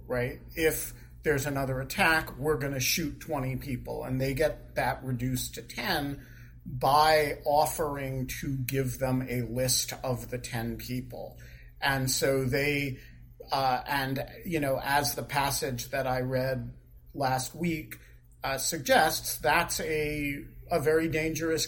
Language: English